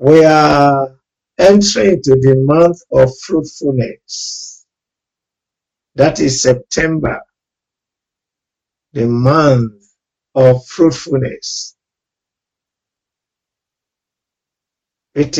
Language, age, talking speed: English, 50-69, 60 wpm